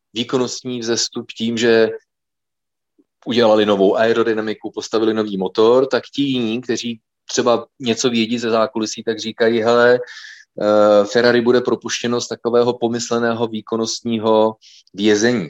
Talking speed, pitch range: 115 wpm, 105-125 Hz